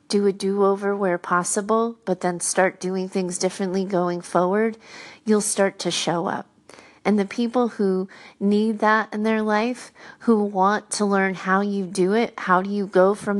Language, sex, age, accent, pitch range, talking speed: English, female, 30-49, American, 185-215 Hz, 180 wpm